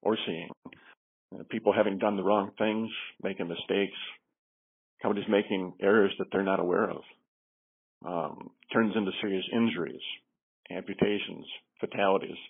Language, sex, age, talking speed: English, male, 50-69, 130 wpm